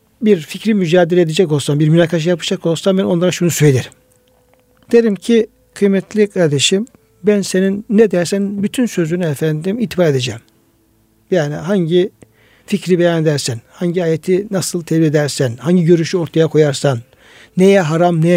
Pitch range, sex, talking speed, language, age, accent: 155-205 Hz, male, 140 wpm, Turkish, 60-79, native